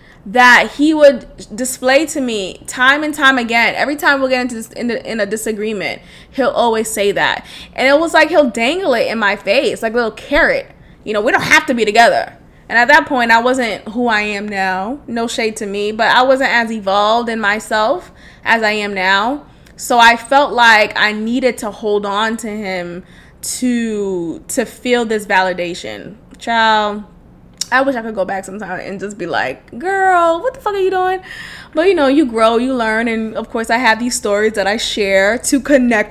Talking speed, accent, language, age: 210 wpm, American, English, 20-39